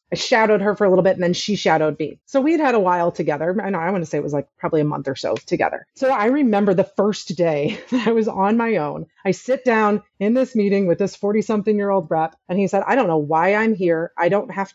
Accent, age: American, 30-49